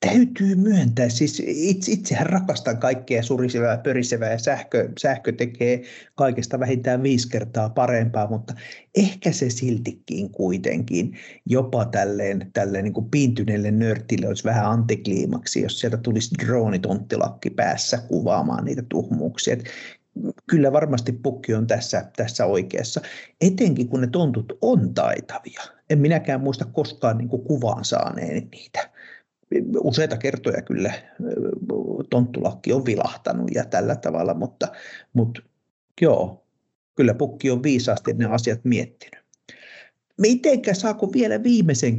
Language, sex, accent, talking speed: Finnish, male, native, 120 wpm